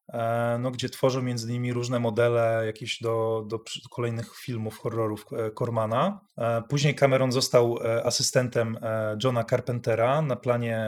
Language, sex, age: Polish, male, 30-49